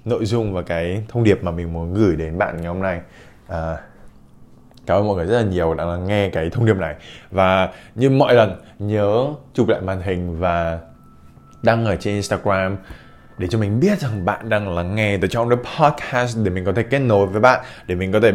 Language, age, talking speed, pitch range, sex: Vietnamese, 20-39, 220 wpm, 90-115 Hz, male